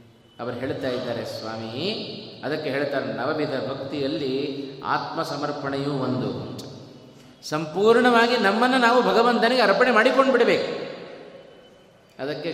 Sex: male